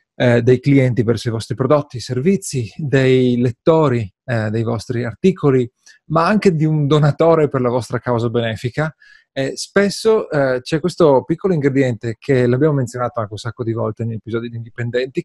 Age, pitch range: 30-49, 125-155 Hz